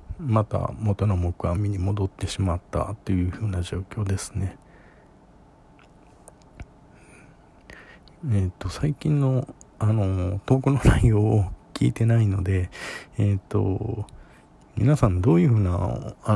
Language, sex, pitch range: Japanese, male, 95-115 Hz